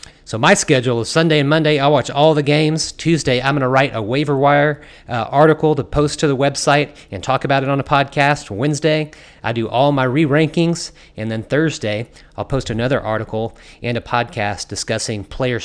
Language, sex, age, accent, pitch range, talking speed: English, male, 30-49, American, 105-140 Hz, 200 wpm